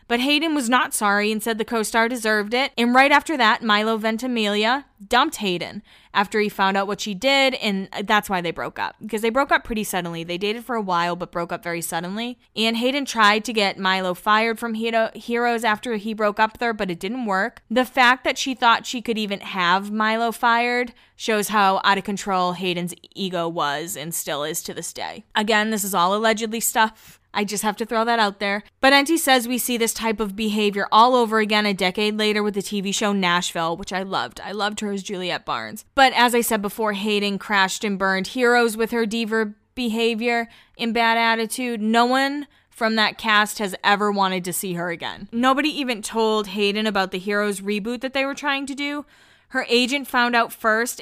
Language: English